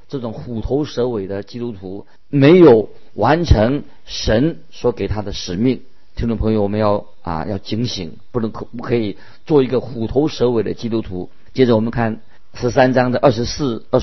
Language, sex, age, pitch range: Chinese, male, 50-69, 110-145 Hz